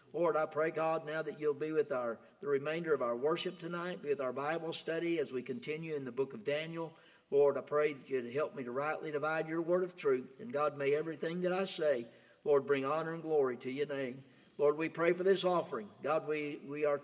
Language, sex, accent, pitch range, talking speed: English, male, American, 140-175 Hz, 240 wpm